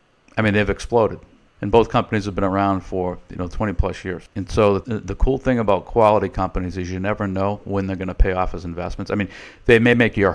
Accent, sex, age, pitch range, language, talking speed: American, male, 50-69, 90-110 Hz, English, 250 wpm